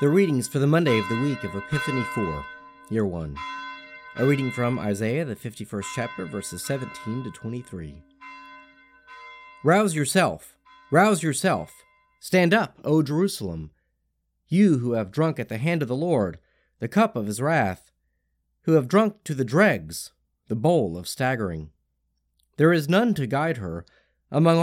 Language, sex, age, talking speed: English, male, 40-59, 155 wpm